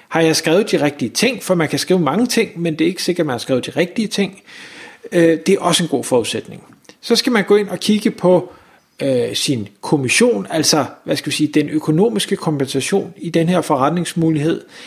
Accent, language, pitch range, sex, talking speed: native, Danish, 150-195 Hz, male, 205 wpm